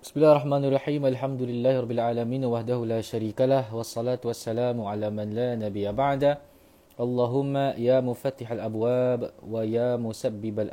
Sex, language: male, Malay